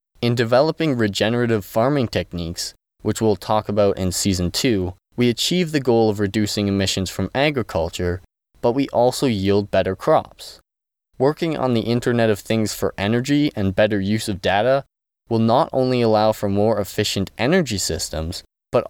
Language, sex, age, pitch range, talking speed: English, male, 20-39, 100-120 Hz, 160 wpm